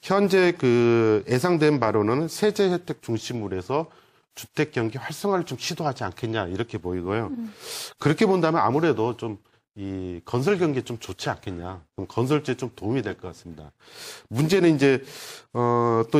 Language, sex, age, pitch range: Korean, male, 30-49, 110-155 Hz